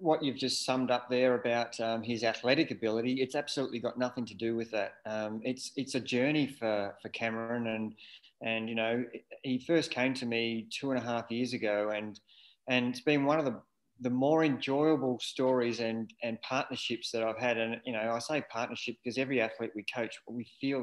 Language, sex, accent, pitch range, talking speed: English, male, Australian, 110-130 Hz, 205 wpm